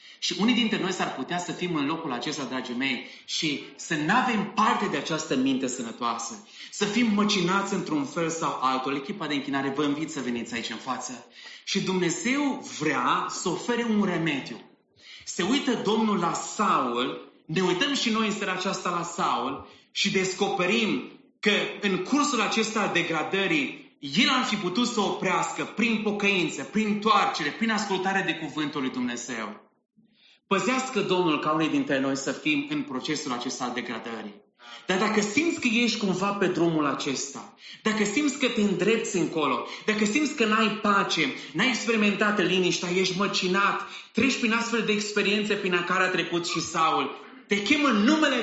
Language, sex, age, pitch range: English, male, 30-49, 165-225 Hz